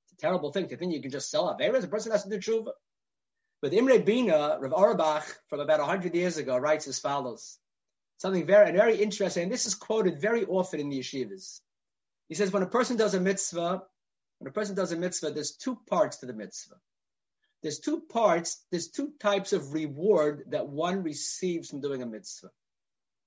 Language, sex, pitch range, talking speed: English, male, 150-215 Hz, 200 wpm